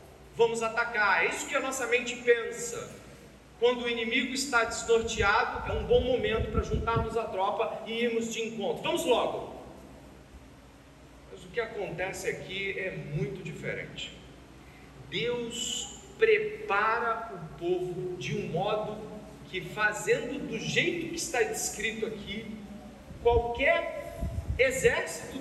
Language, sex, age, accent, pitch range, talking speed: Portuguese, male, 40-59, Brazilian, 210-285 Hz, 125 wpm